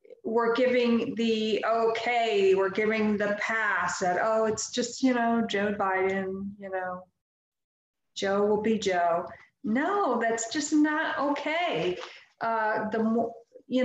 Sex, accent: female, American